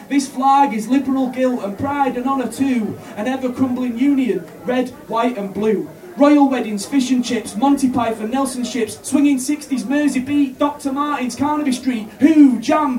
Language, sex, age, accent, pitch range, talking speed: English, male, 20-39, British, 225-285 Hz, 170 wpm